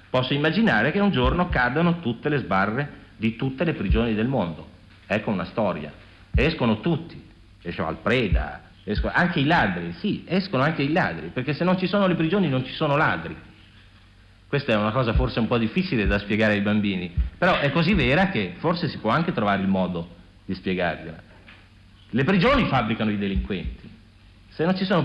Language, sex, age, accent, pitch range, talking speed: Italian, male, 50-69, native, 100-165 Hz, 185 wpm